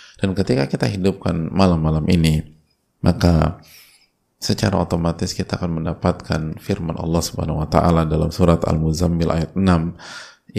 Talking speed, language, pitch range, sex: 125 wpm, Indonesian, 80-90 Hz, male